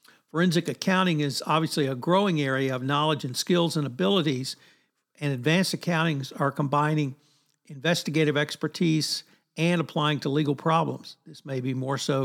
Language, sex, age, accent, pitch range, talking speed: English, male, 60-79, American, 140-165 Hz, 145 wpm